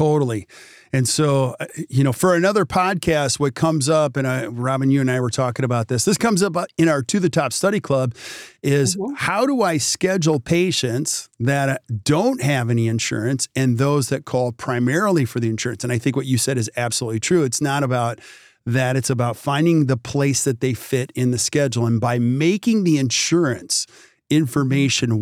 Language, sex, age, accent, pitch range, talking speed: English, male, 40-59, American, 125-155 Hz, 195 wpm